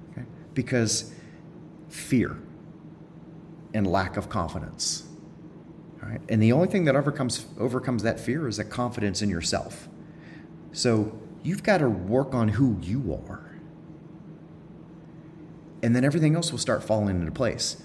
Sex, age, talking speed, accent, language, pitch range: male, 30-49, 135 wpm, American, English, 110-160 Hz